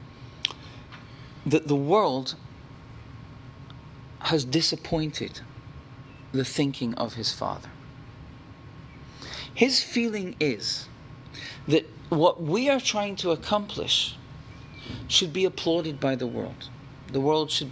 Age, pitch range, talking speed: 40-59, 130-160 Hz, 100 wpm